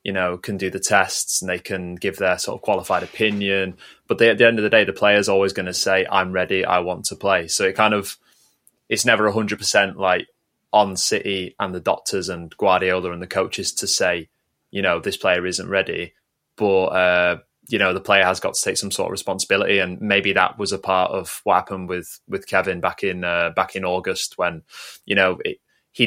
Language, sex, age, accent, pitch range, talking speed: English, male, 20-39, British, 90-100 Hz, 230 wpm